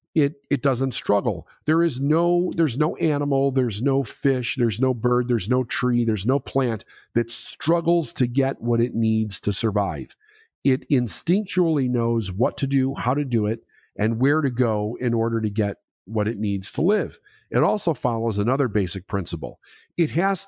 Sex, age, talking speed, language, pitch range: male, 50-69, 180 wpm, English, 110-145 Hz